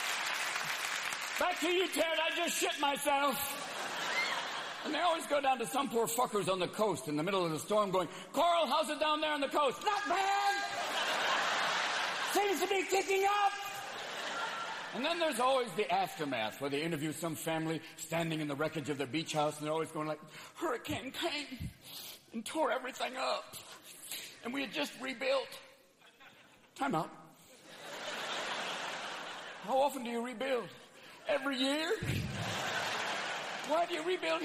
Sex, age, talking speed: male, 50-69, 155 wpm